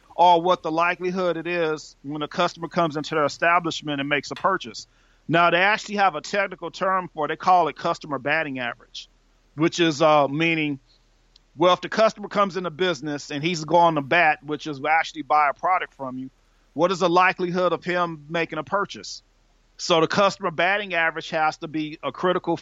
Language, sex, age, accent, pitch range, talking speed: English, male, 40-59, American, 150-180 Hz, 200 wpm